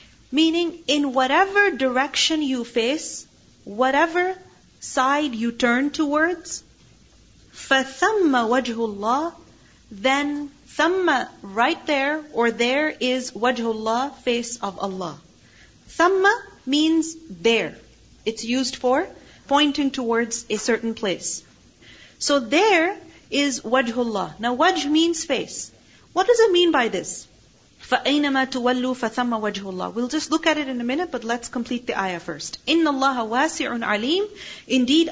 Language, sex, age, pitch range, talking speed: English, female, 40-59, 235-310 Hz, 120 wpm